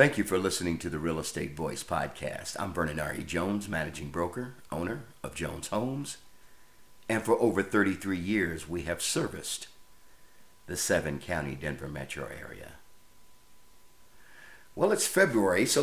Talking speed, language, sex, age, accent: 135 wpm, English, male, 50-69, American